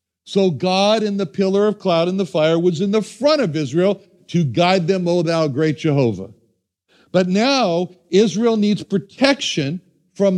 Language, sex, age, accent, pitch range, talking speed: English, male, 60-79, American, 145-195 Hz, 170 wpm